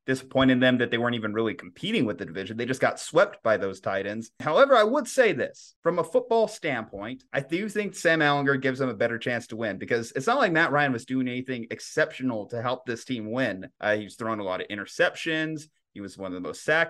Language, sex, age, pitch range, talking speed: English, male, 30-49, 120-150 Hz, 245 wpm